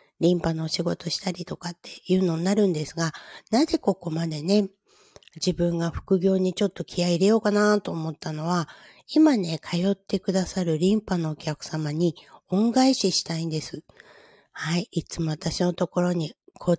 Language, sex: Japanese, female